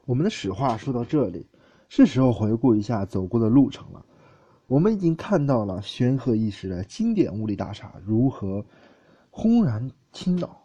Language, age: Chinese, 20-39